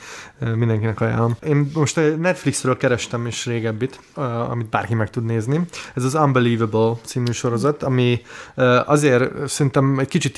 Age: 20-39